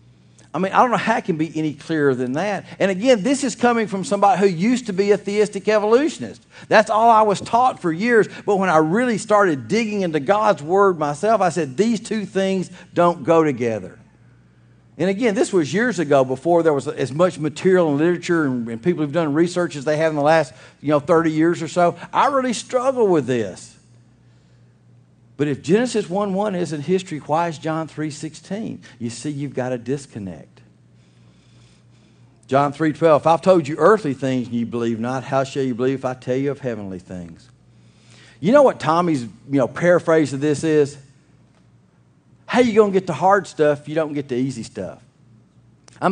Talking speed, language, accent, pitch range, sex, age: 205 wpm, English, American, 145-210 Hz, male, 50-69